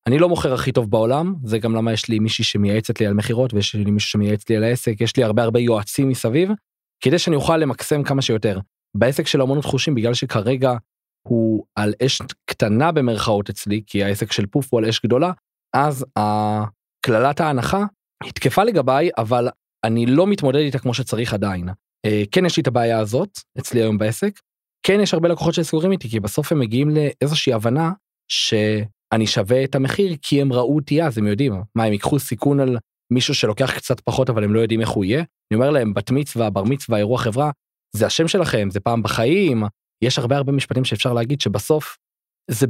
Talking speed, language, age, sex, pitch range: 185 wpm, Hebrew, 20-39, male, 110-145 Hz